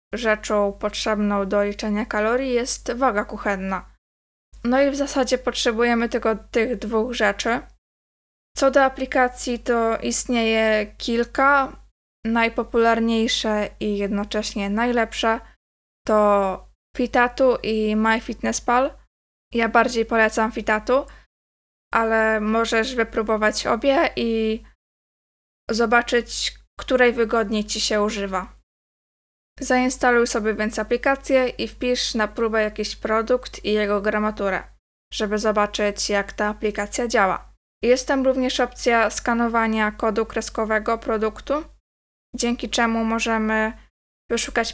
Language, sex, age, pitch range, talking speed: Polish, female, 20-39, 215-240 Hz, 105 wpm